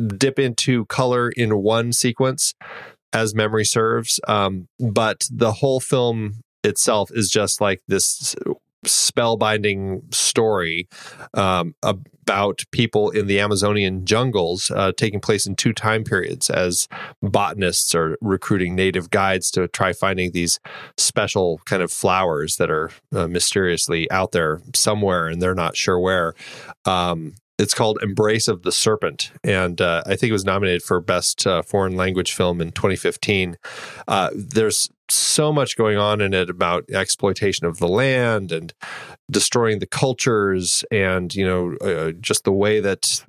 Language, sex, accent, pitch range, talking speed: English, male, American, 95-115 Hz, 150 wpm